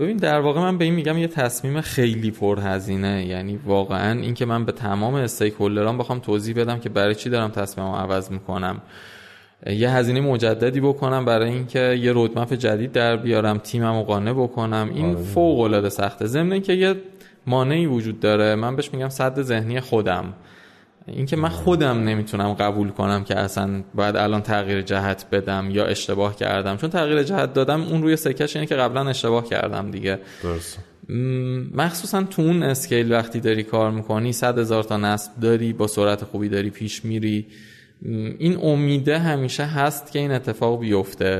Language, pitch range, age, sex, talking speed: Persian, 100-130 Hz, 20-39, male, 170 wpm